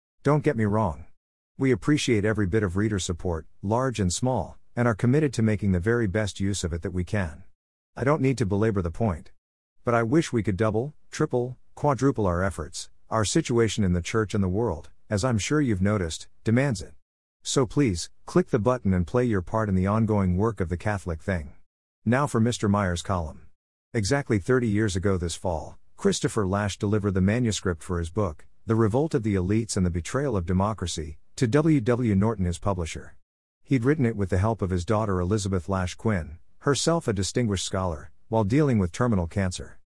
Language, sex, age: English, male, 50-69